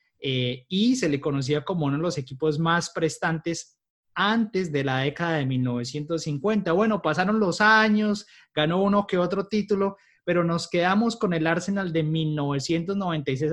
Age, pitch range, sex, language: 30-49, 155-195 Hz, male, Spanish